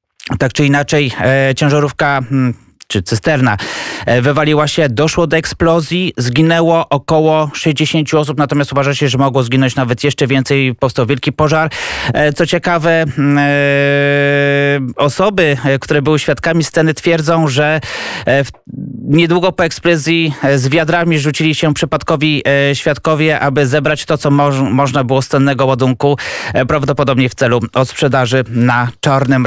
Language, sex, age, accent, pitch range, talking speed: Polish, male, 20-39, native, 130-155 Hz, 125 wpm